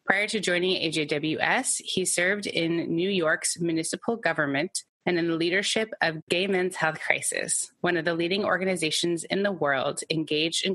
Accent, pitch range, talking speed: American, 160-200 Hz, 165 wpm